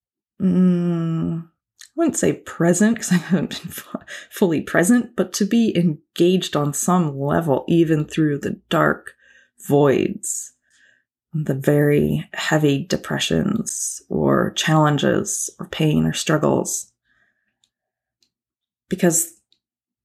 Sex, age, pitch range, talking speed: female, 20-39, 160-190 Hz, 100 wpm